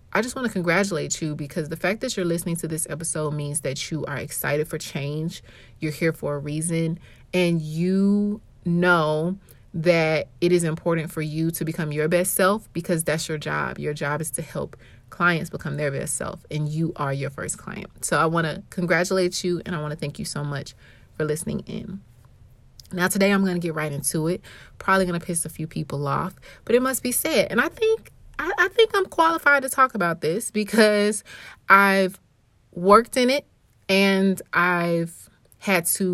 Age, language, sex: 30-49, English, female